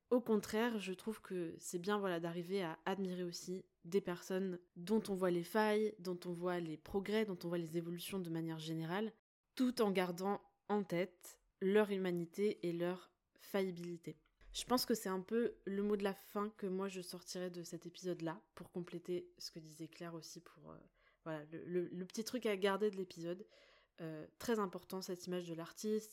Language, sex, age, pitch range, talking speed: French, female, 20-39, 175-205 Hz, 195 wpm